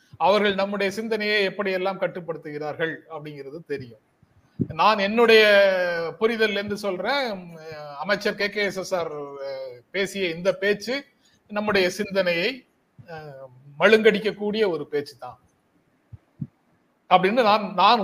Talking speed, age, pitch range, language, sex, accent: 95 wpm, 30-49, 175-230 Hz, Tamil, male, native